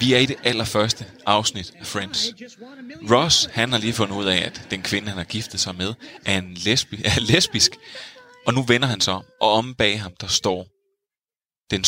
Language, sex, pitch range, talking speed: Danish, male, 95-120 Hz, 205 wpm